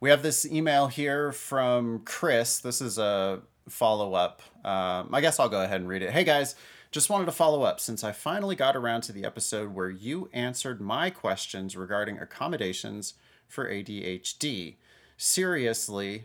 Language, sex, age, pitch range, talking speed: English, male, 30-49, 105-140 Hz, 170 wpm